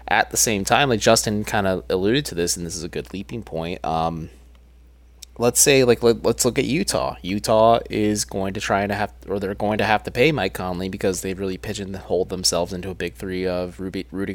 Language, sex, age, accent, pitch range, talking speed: English, male, 20-39, American, 85-105 Hz, 220 wpm